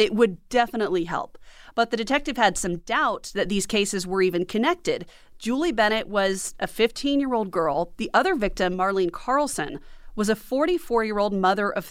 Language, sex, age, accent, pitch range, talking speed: English, female, 30-49, American, 185-245 Hz, 160 wpm